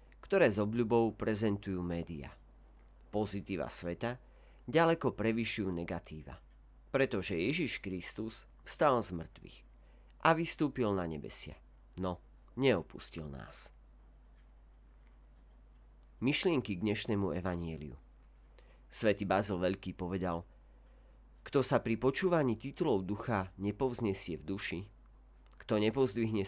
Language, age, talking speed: Slovak, 40-59, 95 wpm